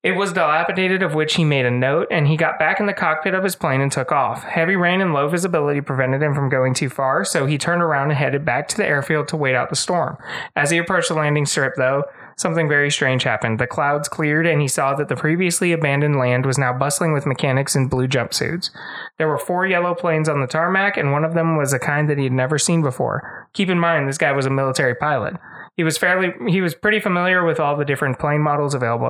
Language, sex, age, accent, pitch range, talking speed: English, male, 20-39, American, 135-165 Hz, 250 wpm